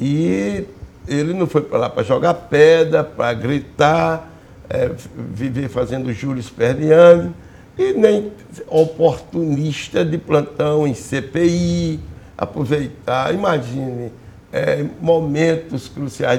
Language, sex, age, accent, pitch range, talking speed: Portuguese, male, 60-79, Brazilian, 135-170 Hz, 105 wpm